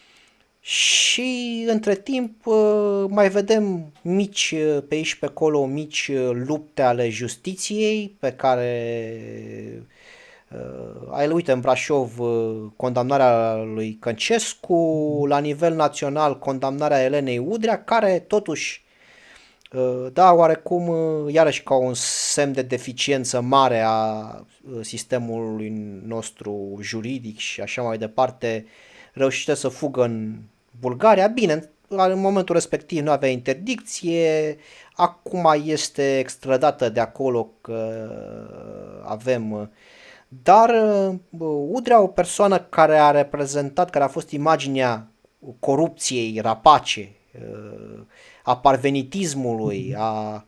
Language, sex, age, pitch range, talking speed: Romanian, male, 30-49, 115-165 Hz, 95 wpm